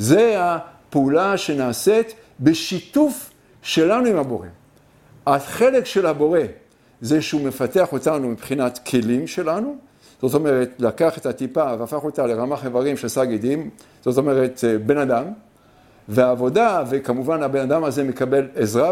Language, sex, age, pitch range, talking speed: English, male, 50-69, 135-210 Hz, 125 wpm